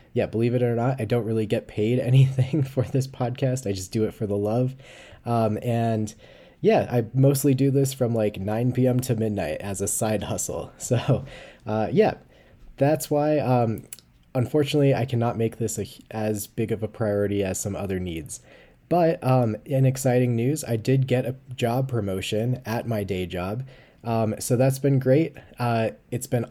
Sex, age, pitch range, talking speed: male, 10-29, 105-130 Hz, 185 wpm